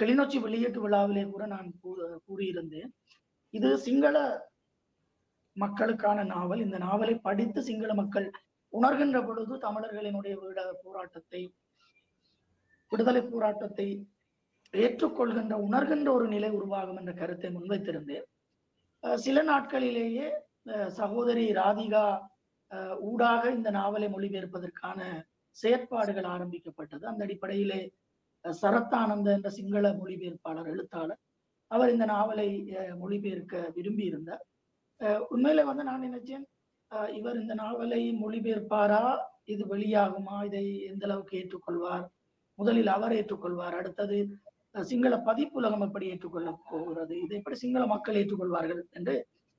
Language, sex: Tamil, female